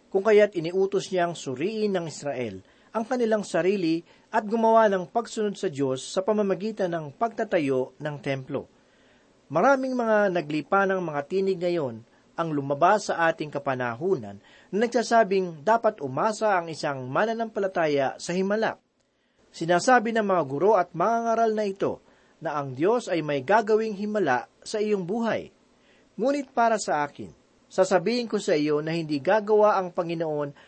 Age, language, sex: 40-59, Filipino, male